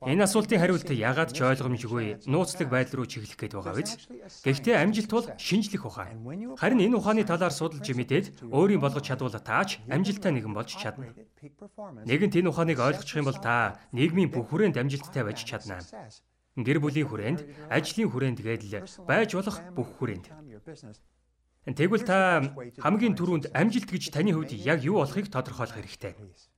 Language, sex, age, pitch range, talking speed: English, male, 30-49, 120-180 Hz, 115 wpm